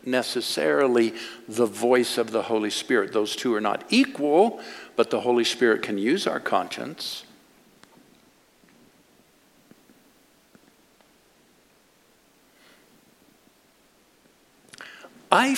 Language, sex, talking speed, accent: English, male, 80 wpm, American